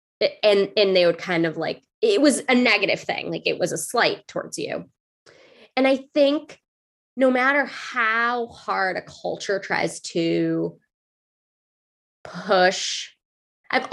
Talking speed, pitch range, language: 140 wpm, 180-255 Hz, English